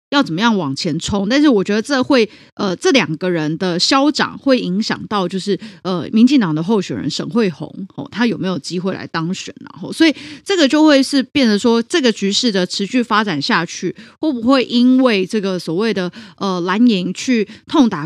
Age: 30-49